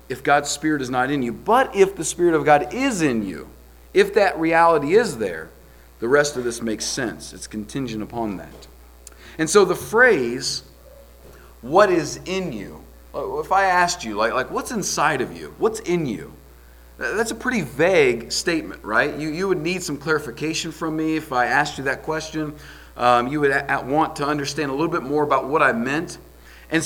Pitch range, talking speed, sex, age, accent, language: 125-175 Hz, 190 wpm, male, 40-59, American, English